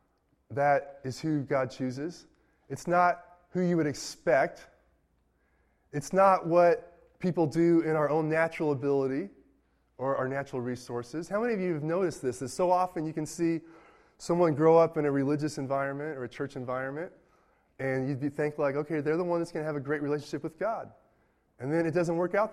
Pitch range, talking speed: 130-175 Hz, 190 wpm